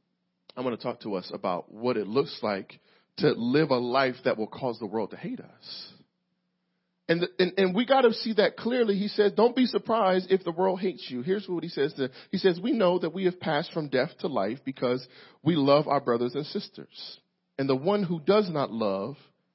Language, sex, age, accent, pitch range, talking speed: English, male, 40-59, American, 155-200 Hz, 225 wpm